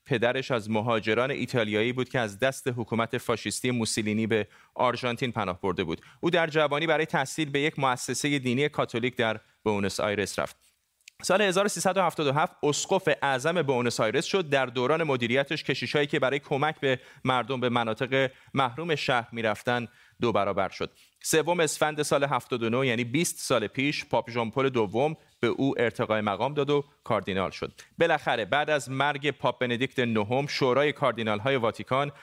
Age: 30-49